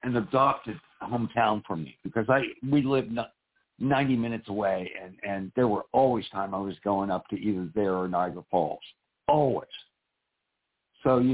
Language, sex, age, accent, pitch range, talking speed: English, male, 60-79, American, 100-130 Hz, 165 wpm